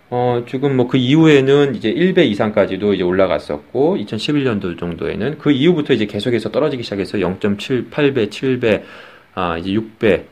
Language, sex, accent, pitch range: Korean, male, native, 100-155 Hz